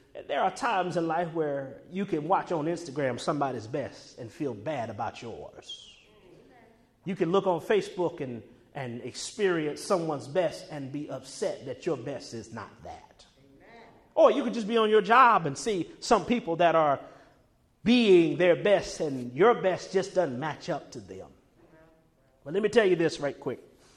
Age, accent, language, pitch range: 40-59, American, English, 145-190 Hz